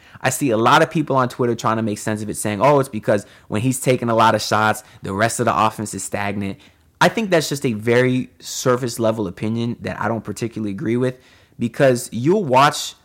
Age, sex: 20-39, male